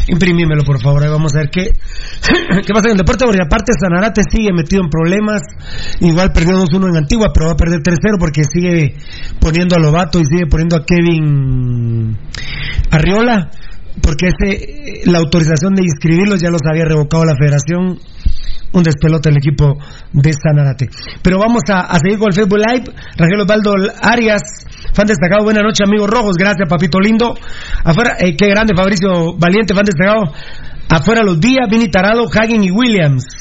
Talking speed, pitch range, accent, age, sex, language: 175 wpm, 160-205 Hz, Mexican, 40-59, male, Spanish